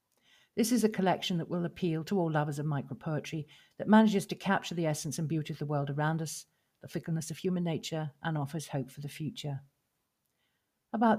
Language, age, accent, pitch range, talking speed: English, 50-69, British, 145-175 Hz, 205 wpm